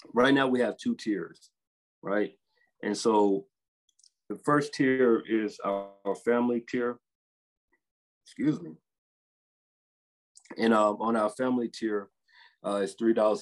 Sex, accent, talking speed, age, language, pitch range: male, American, 120 wpm, 30-49, English, 95-115 Hz